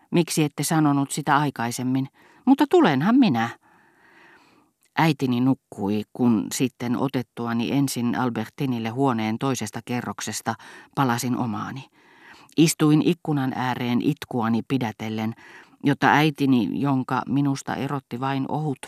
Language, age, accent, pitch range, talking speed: Finnish, 40-59, native, 115-145 Hz, 100 wpm